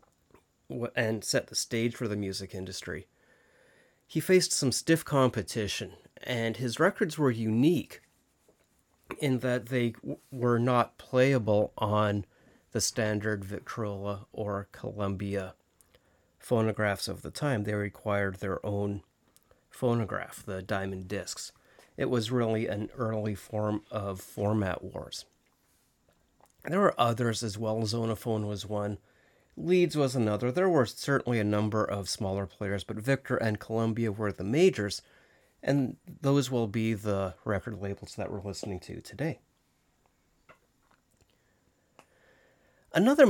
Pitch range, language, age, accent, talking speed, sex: 100-120 Hz, English, 30-49, American, 125 wpm, male